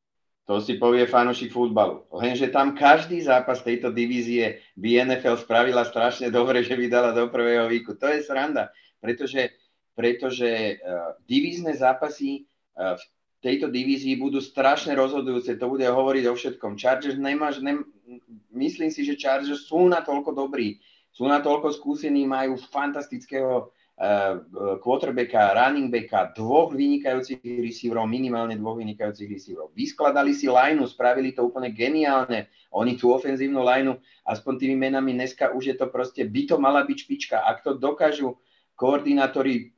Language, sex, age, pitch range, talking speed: Czech, male, 30-49, 120-140 Hz, 135 wpm